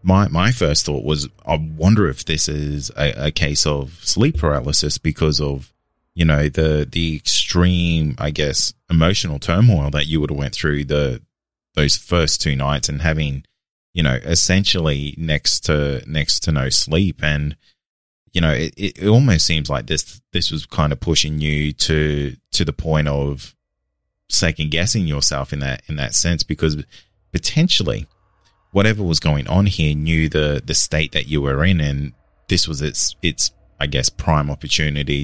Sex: male